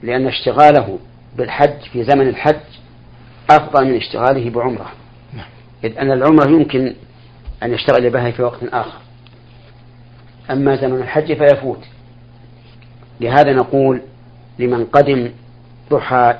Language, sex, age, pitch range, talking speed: Arabic, male, 50-69, 120-130 Hz, 105 wpm